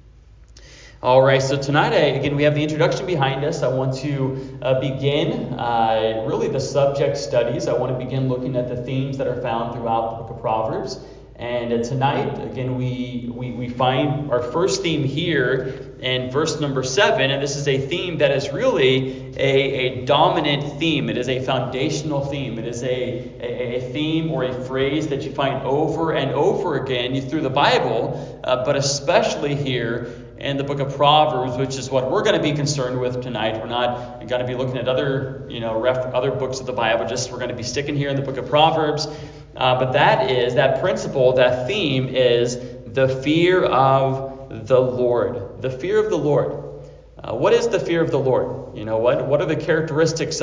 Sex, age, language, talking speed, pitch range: male, 30-49, English, 200 wpm, 125-150 Hz